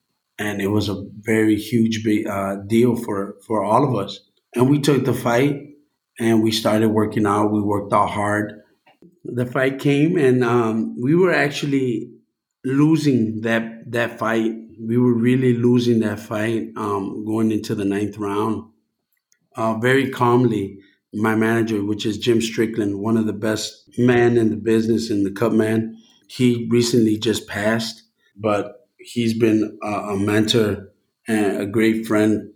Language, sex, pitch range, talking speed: English, male, 110-130 Hz, 160 wpm